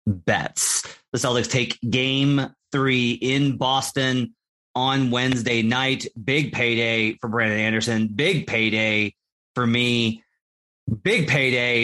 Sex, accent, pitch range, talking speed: male, American, 115-145 Hz, 110 wpm